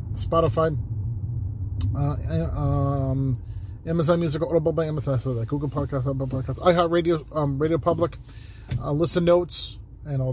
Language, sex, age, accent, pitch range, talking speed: English, male, 30-49, American, 100-135 Hz, 130 wpm